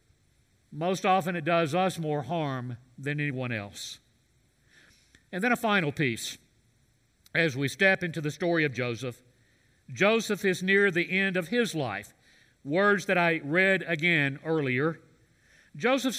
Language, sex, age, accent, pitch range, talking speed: English, male, 50-69, American, 135-205 Hz, 140 wpm